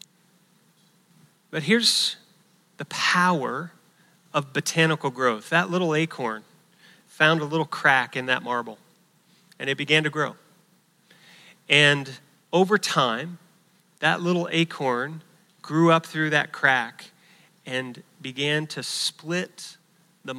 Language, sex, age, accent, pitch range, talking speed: English, male, 30-49, American, 145-180 Hz, 110 wpm